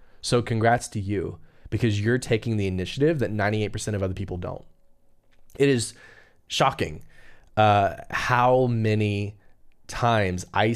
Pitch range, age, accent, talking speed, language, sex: 95-125 Hz, 20-39, American, 130 wpm, English, male